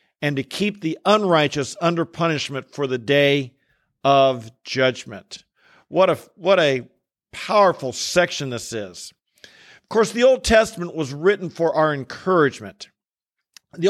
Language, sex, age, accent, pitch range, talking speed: English, male, 50-69, American, 155-190 Hz, 135 wpm